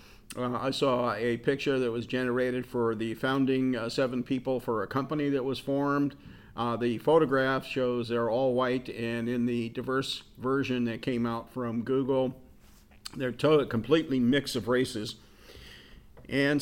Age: 50-69